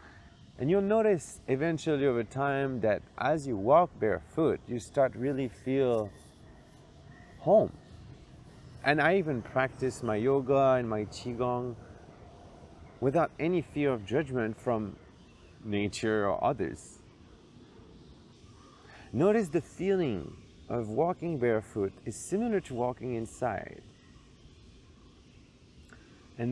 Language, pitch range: English, 110-140 Hz